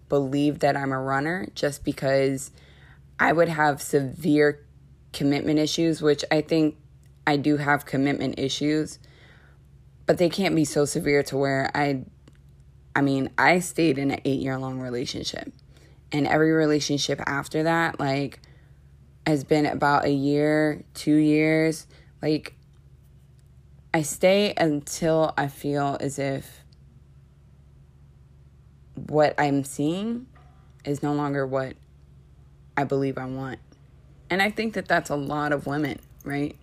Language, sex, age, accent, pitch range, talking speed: English, female, 20-39, American, 130-155 Hz, 135 wpm